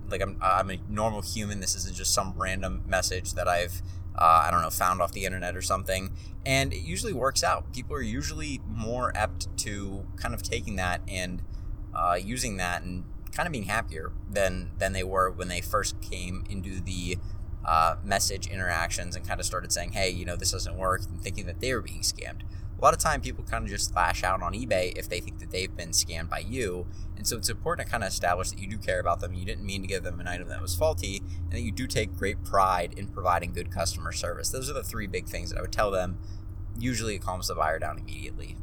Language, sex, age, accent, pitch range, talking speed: English, male, 20-39, American, 90-100 Hz, 240 wpm